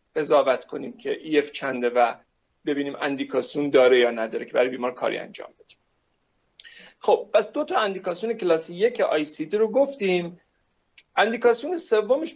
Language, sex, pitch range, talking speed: Persian, male, 160-225 Hz, 140 wpm